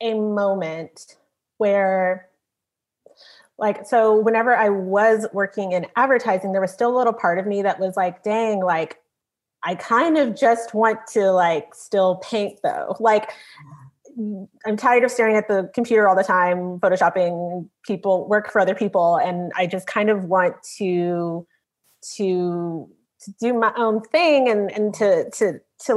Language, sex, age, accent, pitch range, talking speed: English, female, 30-49, American, 185-230 Hz, 160 wpm